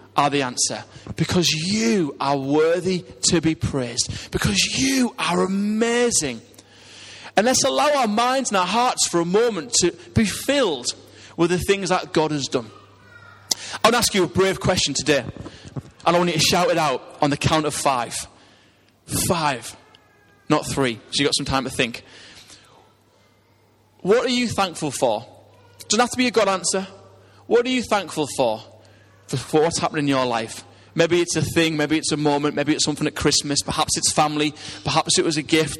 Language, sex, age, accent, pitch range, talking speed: English, male, 30-49, British, 135-200 Hz, 185 wpm